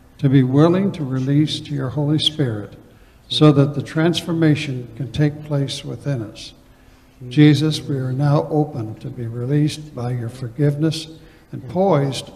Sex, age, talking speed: male, 60-79, 150 wpm